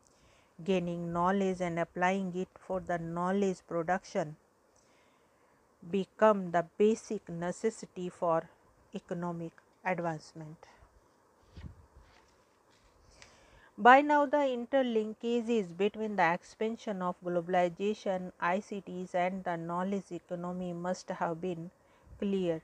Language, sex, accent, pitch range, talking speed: English, female, Indian, 175-205 Hz, 90 wpm